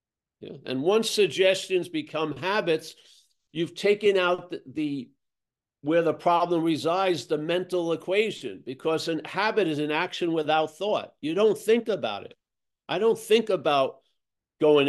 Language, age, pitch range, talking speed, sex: English, 50-69, 155-205 Hz, 145 wpm, male